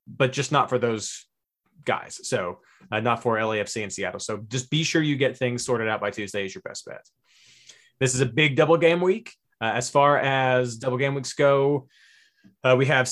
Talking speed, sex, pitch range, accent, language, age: 210 wpm, male, 125-155 Hz, American, English, 30-49